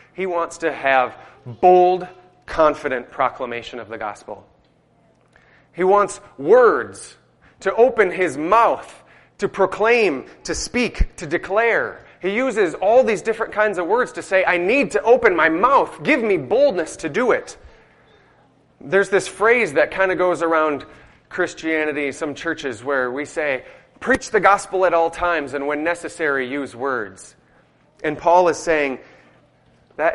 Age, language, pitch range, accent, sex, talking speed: 30-49, English, 155-205 Hz, American, male, 150 wpm